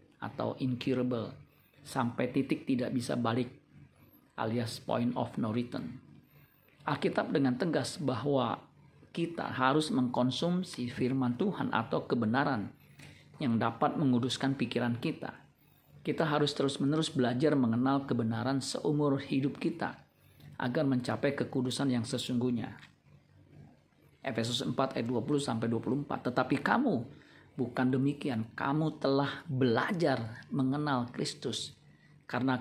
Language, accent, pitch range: Indonesian, native, 120-140 Hz